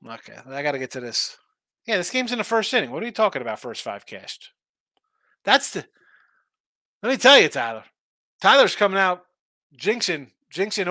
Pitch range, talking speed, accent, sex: 140-190 Hz, 195 wpm, American, male